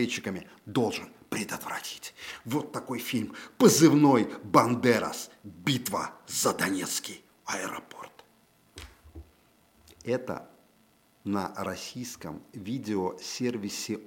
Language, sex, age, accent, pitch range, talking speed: Russian, male, 50-69, native, 100-135 Hz, 65 wpm